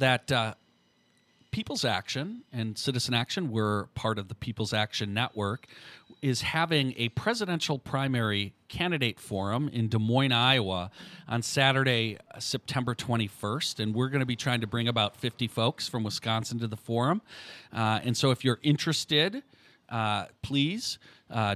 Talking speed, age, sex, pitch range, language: 150 wpm, 40-59, male, 110-140 Hz, English